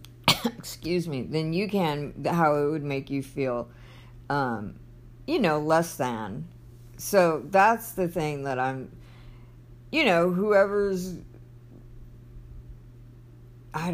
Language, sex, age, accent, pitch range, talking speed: English, female, 50-69, American, 120-155 Hz, 110 wpm